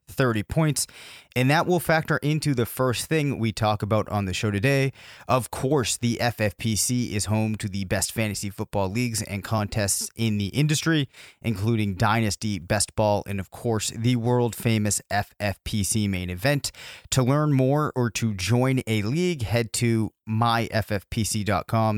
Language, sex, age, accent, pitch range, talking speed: English, male, 30-49, American, 105-130 Hz, 155 wpm